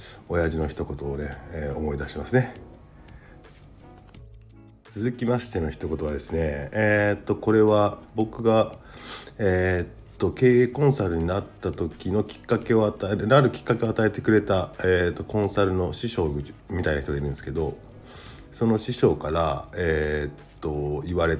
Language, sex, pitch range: Japanese, male, 80-115 Hz